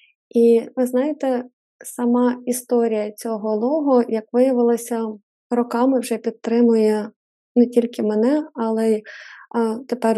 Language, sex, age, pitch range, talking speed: Ukrainian, female, 20-39, 220-250 Hz, 110 wpm